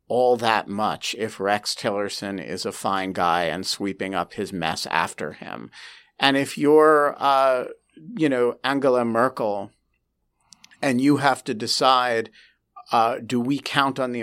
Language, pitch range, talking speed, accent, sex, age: English, 110-135 Hz, 150 wpm, American, male, 50-69